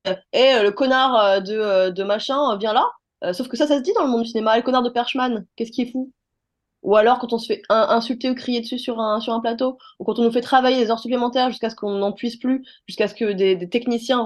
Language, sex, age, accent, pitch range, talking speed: French, female, 20-39, French, 195-255 Hz, 260 wpm